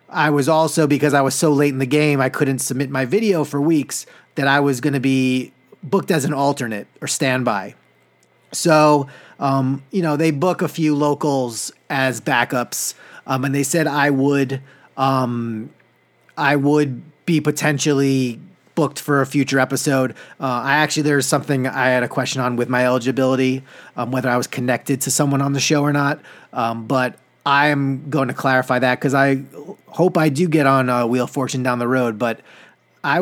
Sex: male